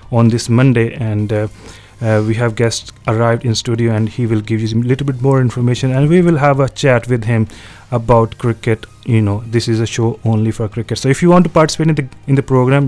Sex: male